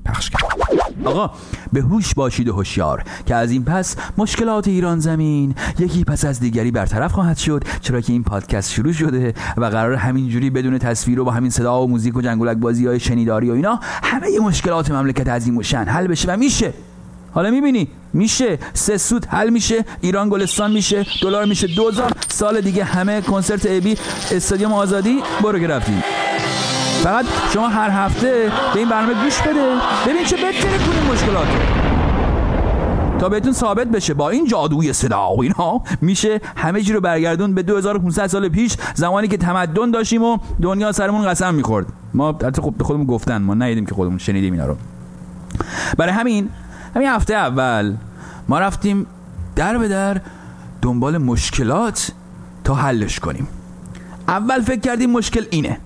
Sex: male